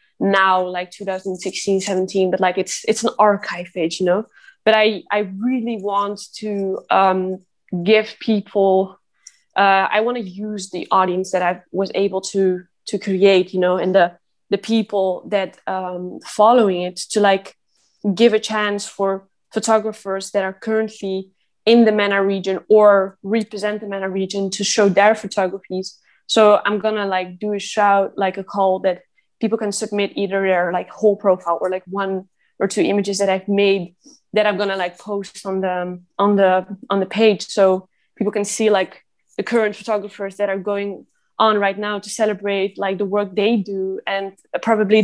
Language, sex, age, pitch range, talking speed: English, female, 20-39, 190-210 Hz, 175 wpm